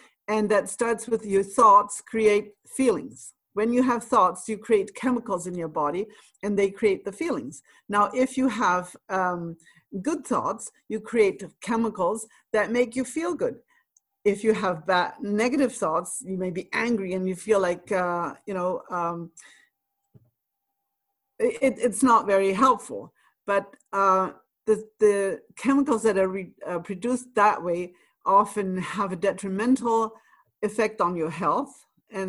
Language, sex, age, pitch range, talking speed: English, female, 50-69, 190-245 Hz, 150 wpm